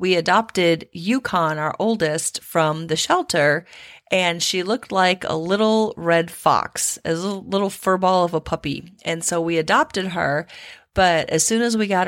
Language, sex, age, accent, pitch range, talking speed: English, female, 30-49, American, 165-200 Hz, 170 wpm